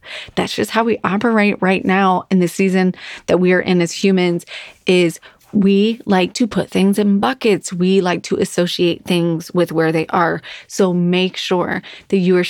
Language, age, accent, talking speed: English, 30-49, American, 185 wpm